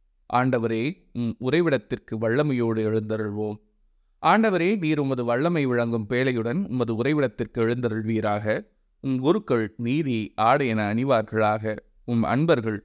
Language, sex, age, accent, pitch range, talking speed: Tamil, male, 30-49, native, 110-130 Hz, 95 wpm